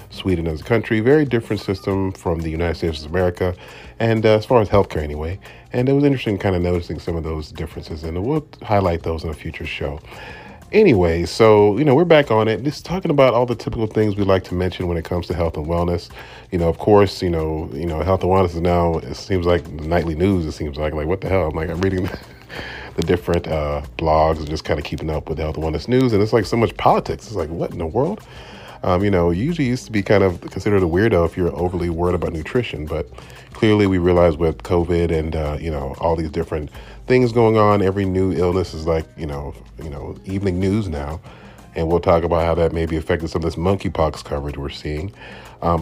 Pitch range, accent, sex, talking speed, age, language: 80-105 Hz, American, male, 240 wpm, 40-59, English